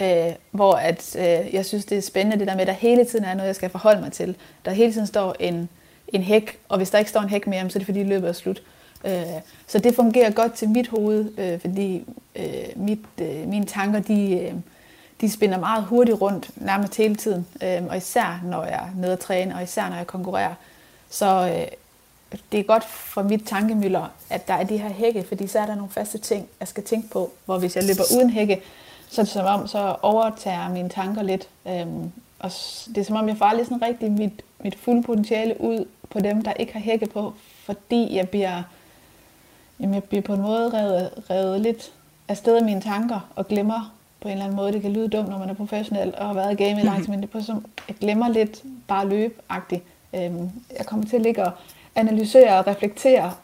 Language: Danish